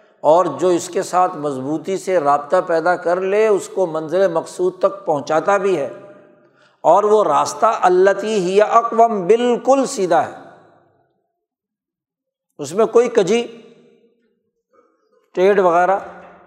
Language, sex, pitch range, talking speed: Urdu, male, 170-230 Hz, 125 wpm